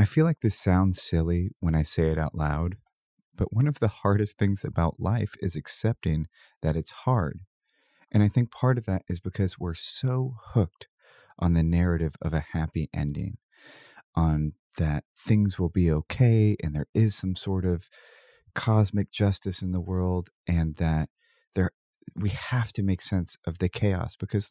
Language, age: English, 30-49